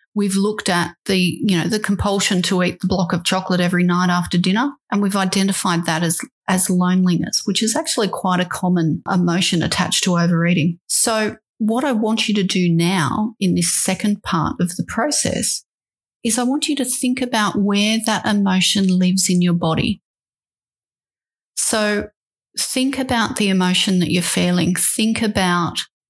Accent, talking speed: Australian, 170 wpm